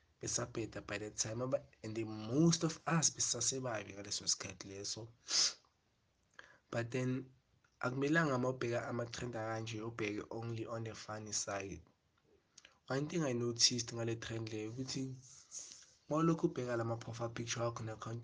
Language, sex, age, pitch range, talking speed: English, male, 20-39, 110-130 Hz, 130 wpm